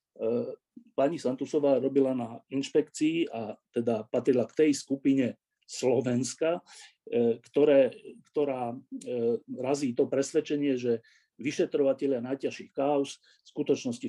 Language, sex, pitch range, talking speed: Slovak, male, 125-165 Hz, 100 wpm